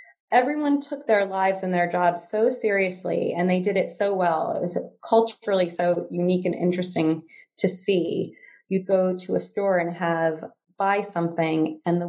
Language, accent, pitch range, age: English, American, 170-205 Hz, 20-39